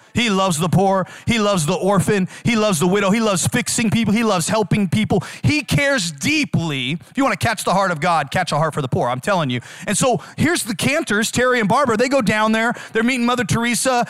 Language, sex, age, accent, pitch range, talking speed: English, male, 30-49, American, 145-230 Hz, 245 wpm